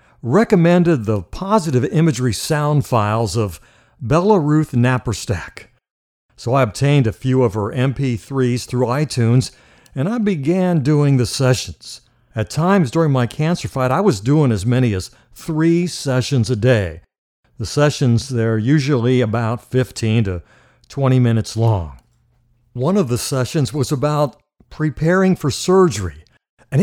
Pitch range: 115-150 Hz